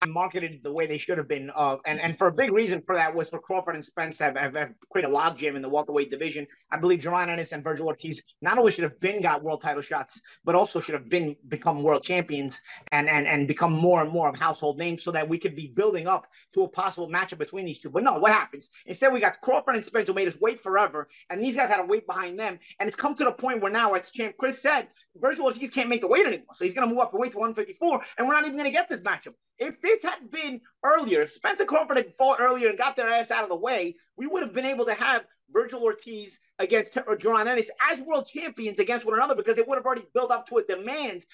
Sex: male